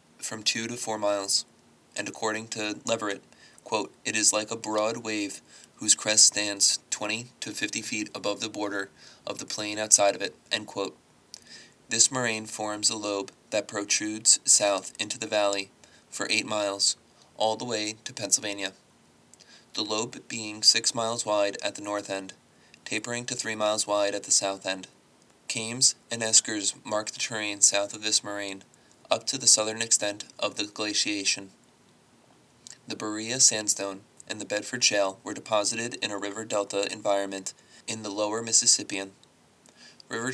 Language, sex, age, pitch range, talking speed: English, male, 20-39, 100-110 Hz, 160 wpm